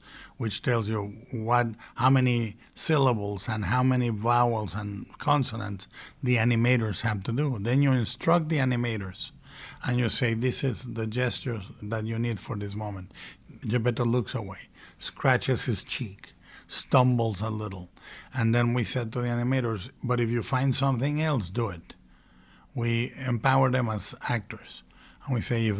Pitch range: 110-130 Hz